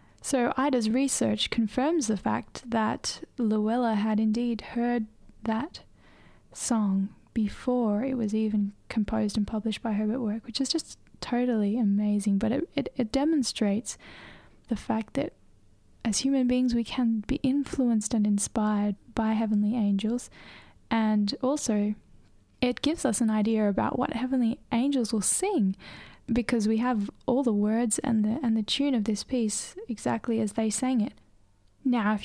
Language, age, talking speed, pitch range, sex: English, 10-29, 155 wpm, 215-255 Hz, female